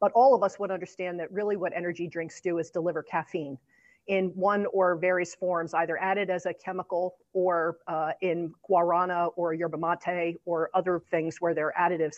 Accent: American